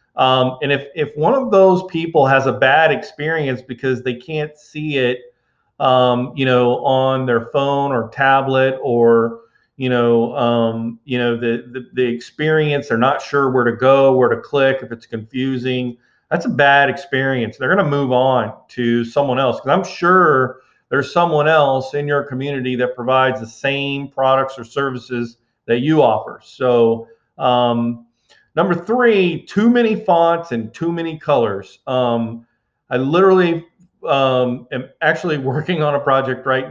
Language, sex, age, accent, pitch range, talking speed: English, male, 40-59, American, 125-150 Hz, 165 wpm